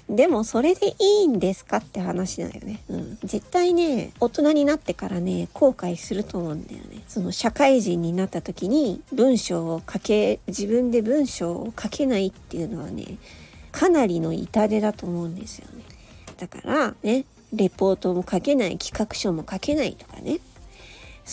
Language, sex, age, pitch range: Japanese, female, 40-59, 190-300 Hz